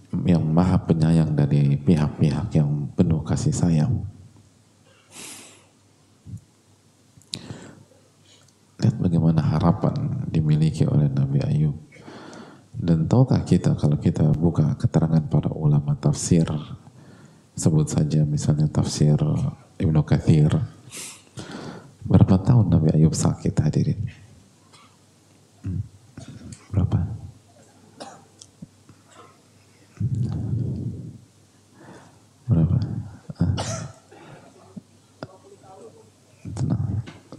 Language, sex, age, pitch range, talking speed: English, male, 40-59, 100-135 Hz, 65 wpm